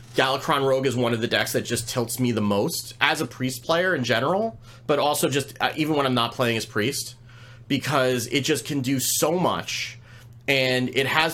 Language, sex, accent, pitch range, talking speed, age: English, male, American, 115-140 Hz, 210 wpm, 30-49